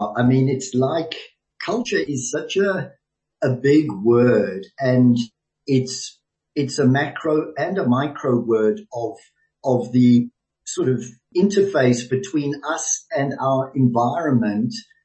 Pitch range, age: 130-160 Hz, 50-69